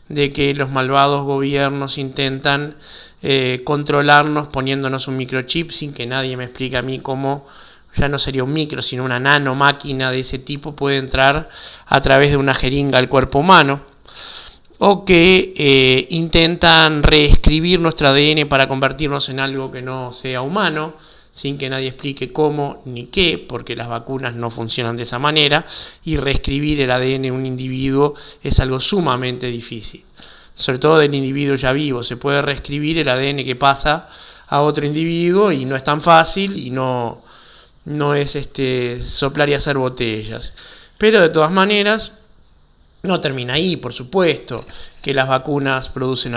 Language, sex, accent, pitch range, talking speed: Spanish, male, Argentinian, 130-150 Hz, 160 wpm